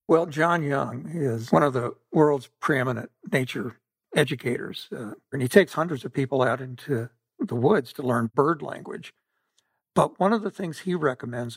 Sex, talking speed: male, 170 wpm